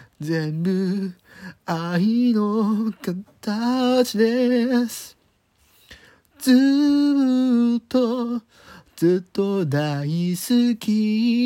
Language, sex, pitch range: Japanese, male, 180-245 Hz